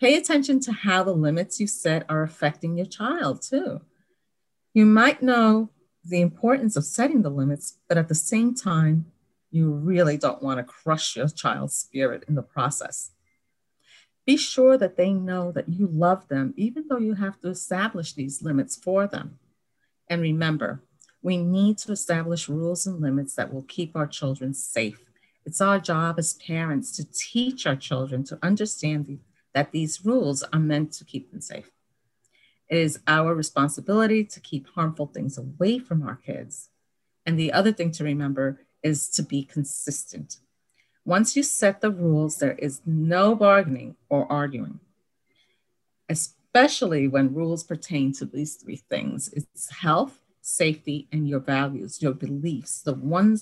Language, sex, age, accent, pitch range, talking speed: English, female, 40-59, American, 145-200 Hz, 165 wpm